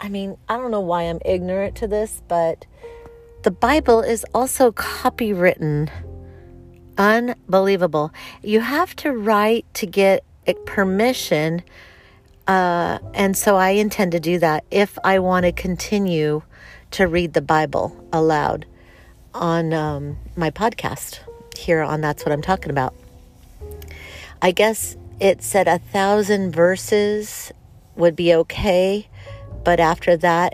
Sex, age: female, 50-69